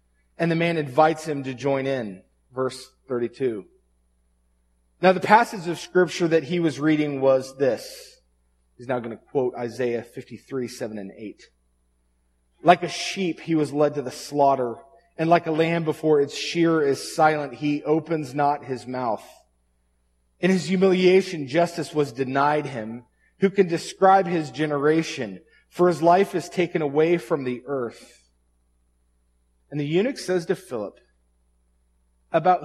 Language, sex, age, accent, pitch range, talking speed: English, male, 30-49, American, 100-170 Hz, 150 wpm